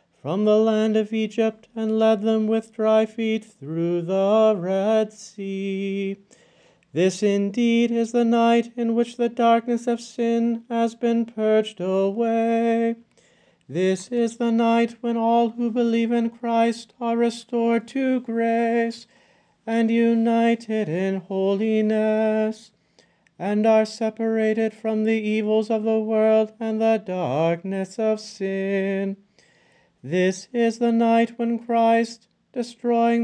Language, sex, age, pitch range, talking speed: English, male, 30-49, 215-235 Hz, 125 wpm